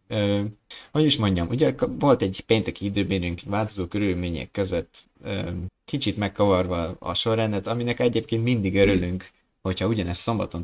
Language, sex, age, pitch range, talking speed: Hungarian, male, 20-39, 90-110 Hz, 135 wpm